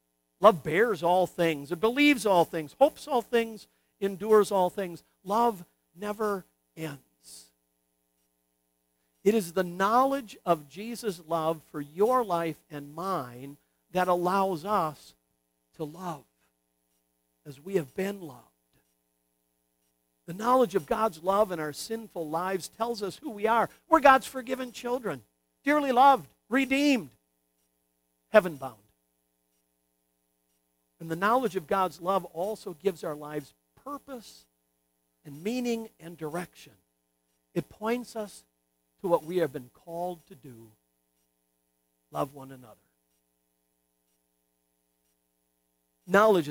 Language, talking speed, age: English, 120 wpm, 50-69